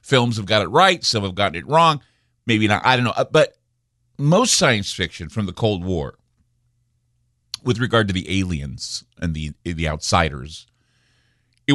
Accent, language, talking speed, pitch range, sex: American, English, 170 wpm, 105-135 Hz, male